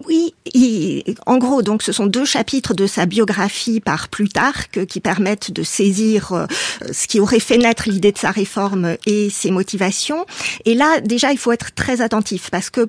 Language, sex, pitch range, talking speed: French, female, 185-230 Hz, 190 wpm